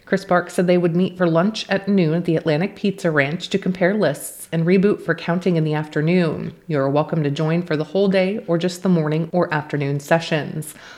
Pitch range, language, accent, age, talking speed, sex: 155-185 Hz, English, American, 30-49, 225 wpm, female